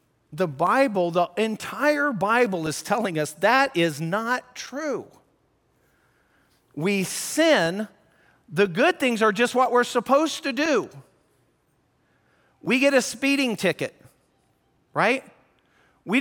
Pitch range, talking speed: 200-270 Hz, 115 wpm